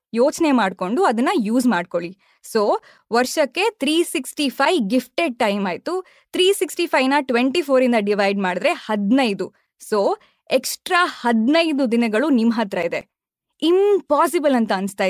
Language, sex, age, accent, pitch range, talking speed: Kannada, female, 20-39, native, 225-325 Hz, 130 wpm